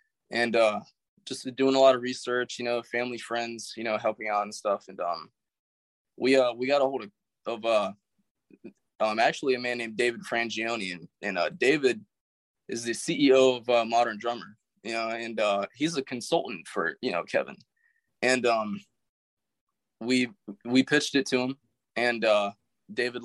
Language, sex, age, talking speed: English, male, 20-39, 180 wpm